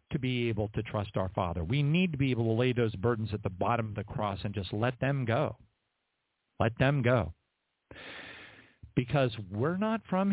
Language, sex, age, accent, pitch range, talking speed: English, male, 50-69, American, 115-175 Hz, 200 wpm